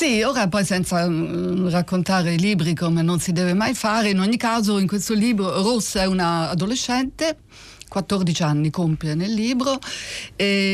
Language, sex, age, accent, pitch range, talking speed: Italian, female, 50-69, native, 175-220 Hz, 170 wpm